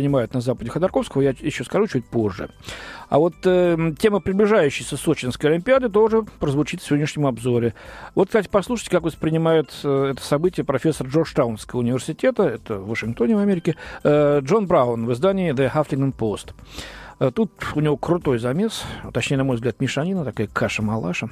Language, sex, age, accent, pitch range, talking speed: Russian, male, 40-59, native, 125-185 Hz, 160 wpm